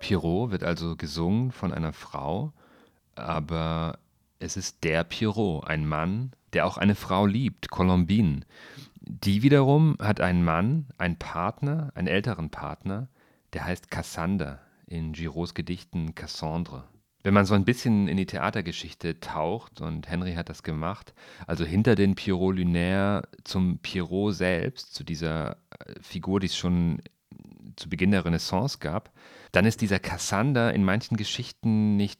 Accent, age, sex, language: German, 40-59, male, German